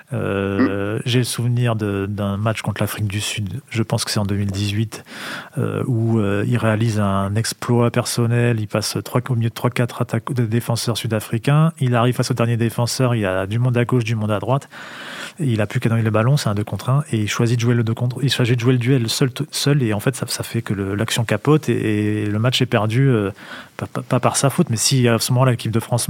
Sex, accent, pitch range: male, French, 110-130 Hz